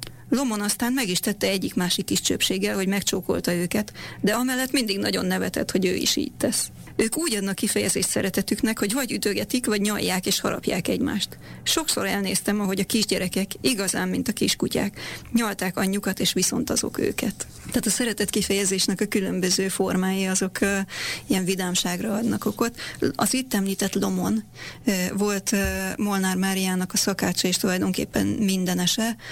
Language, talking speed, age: Hungarian, 155 wpm, 30-49